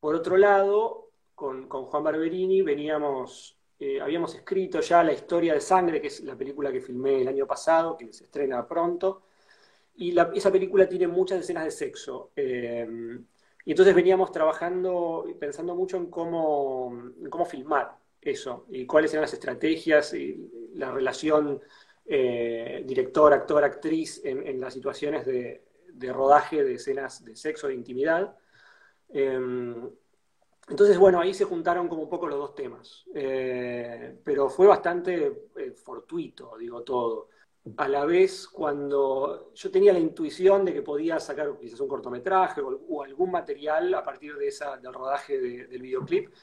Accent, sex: Argentinian, male